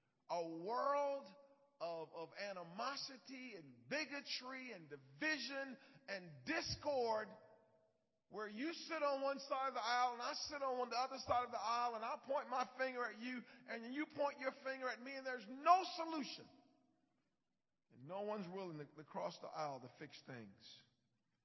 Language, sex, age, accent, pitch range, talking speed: English, male, 40-59, American, 200-275 Hz, 170 wpm